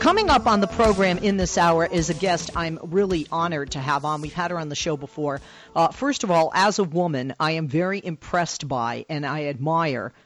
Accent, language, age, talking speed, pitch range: American, English, 50-69, 230 wpm, 140-175 Hz